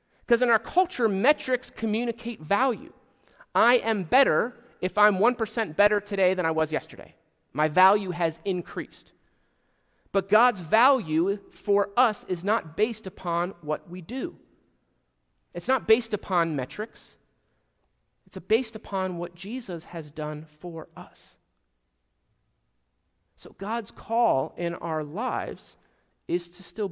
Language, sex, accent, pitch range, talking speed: English, male, American, 150-215 Hz, 130 wpm